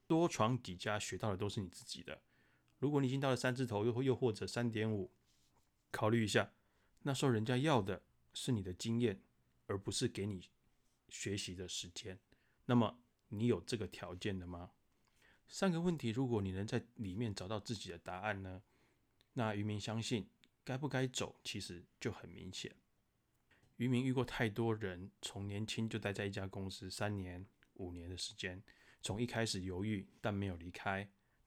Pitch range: 95-120 Hz